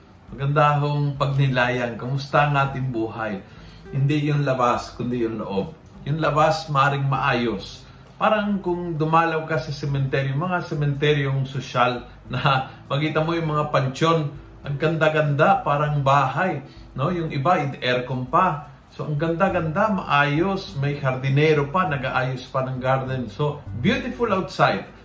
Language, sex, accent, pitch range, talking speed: Filipino, male, native, 125-155 Hz, 135 wpm